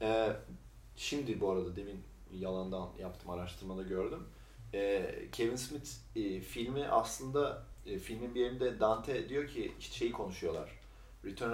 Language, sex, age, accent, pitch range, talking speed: Turkish, male, 40-59, native, 100-120 Hz, 115 wpm